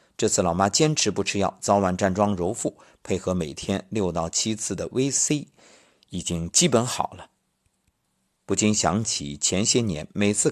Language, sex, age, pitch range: Chinese, male, 50-69, 90-130 Hz